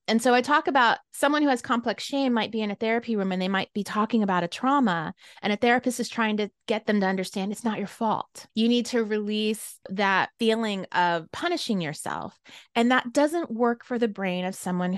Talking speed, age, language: 225 wpm, 30-49, English